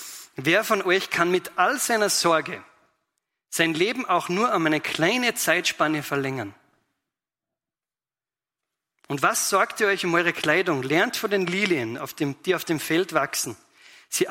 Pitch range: 135-180 Hz